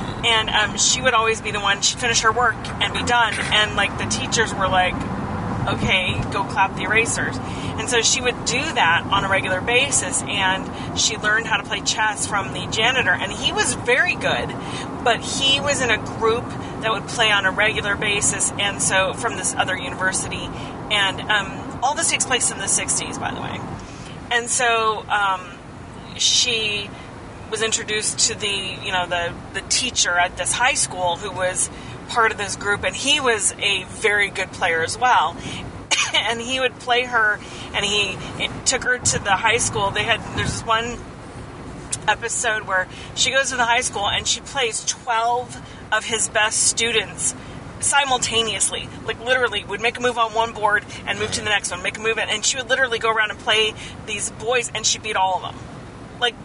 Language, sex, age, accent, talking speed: English, female, 30-49, American, 195 wpm